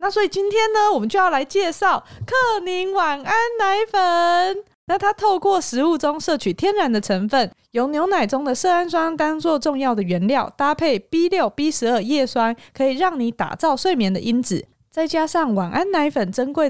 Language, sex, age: Chinese, female, 20-39